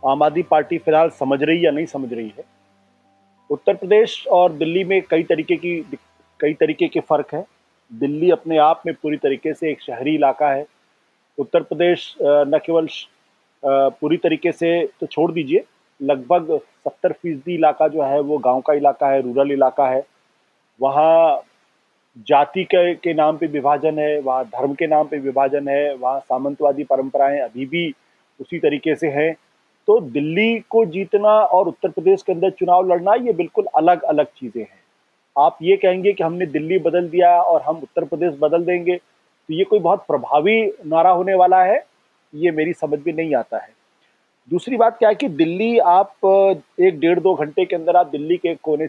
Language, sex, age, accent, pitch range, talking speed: Hindi, male, 40-59, native, 145-185 Hz, 180 wpm